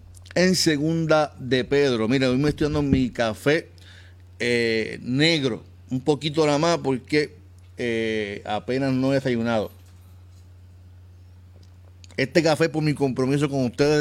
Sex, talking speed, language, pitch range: male, 130 wpm, Spanish, 95-140 Hz